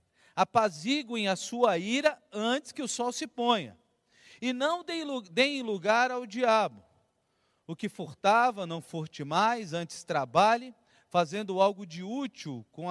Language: Portuguese